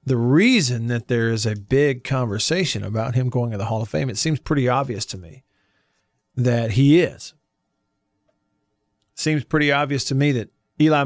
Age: 40-59